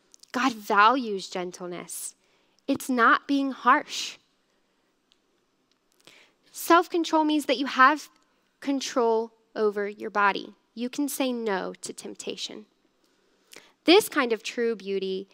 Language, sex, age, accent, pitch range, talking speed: English, female, 10-29, American, 195-265 Hz, 105 wpm